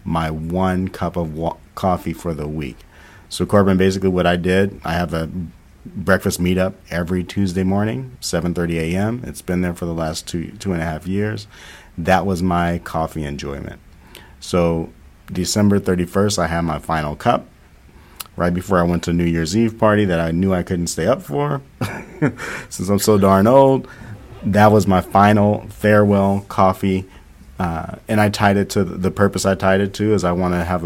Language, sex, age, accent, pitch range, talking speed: English, male, 40-59, American, 80-95 Hz, 185 wpm